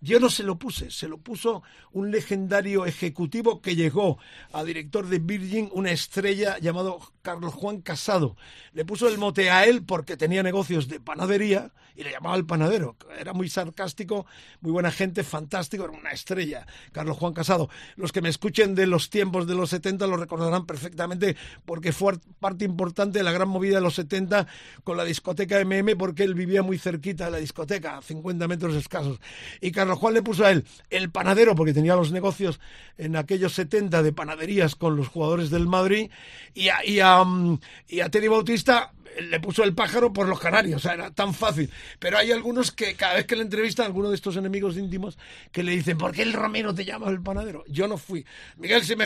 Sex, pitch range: male, 170-205 Hz